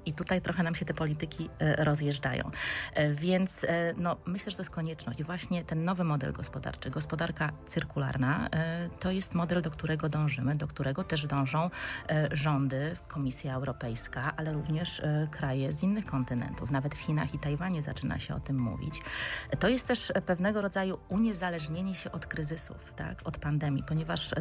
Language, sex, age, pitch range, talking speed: Polish, female, 30-49, 145-175 Hz, 155 wpm